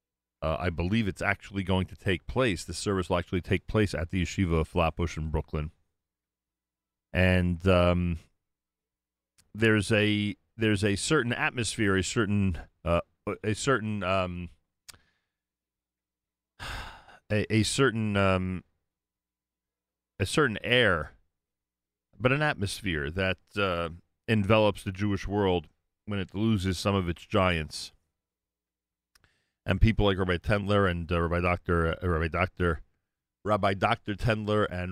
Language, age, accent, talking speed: English, 40-59, American, 130 wpm